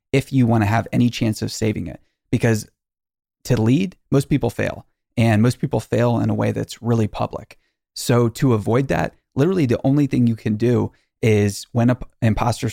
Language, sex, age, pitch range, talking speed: English, male, 30-49, 105-120 Hz, 190 wpm